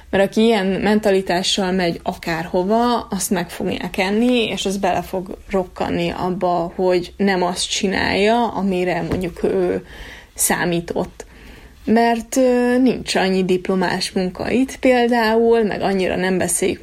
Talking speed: 125 wpm